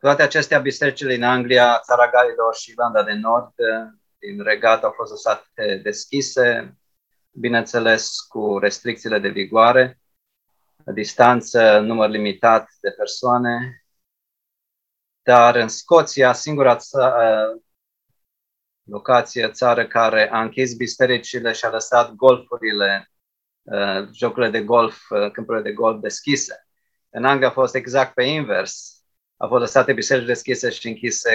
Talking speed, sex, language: 120 wpm, male, Romanian